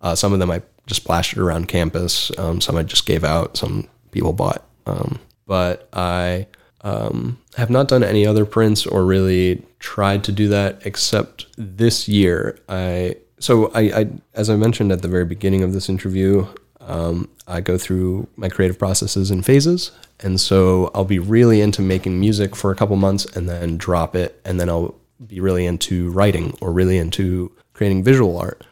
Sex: male